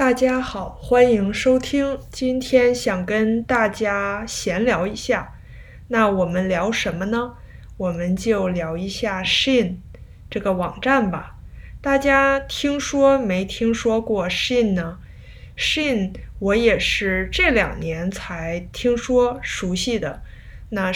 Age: 20-39